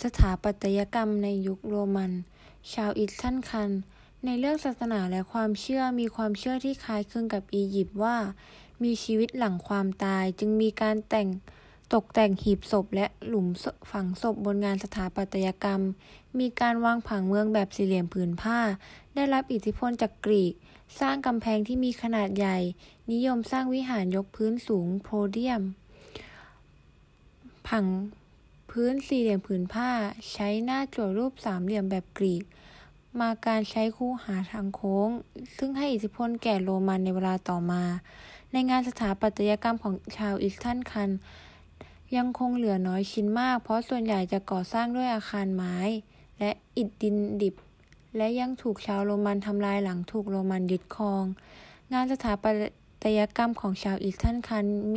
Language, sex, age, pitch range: Thai, female, 20-39, 195-235 Hz